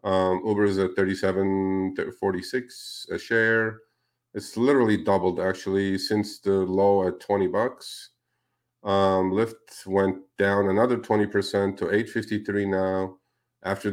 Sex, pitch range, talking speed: male, 100-110 Hz, 115 wpm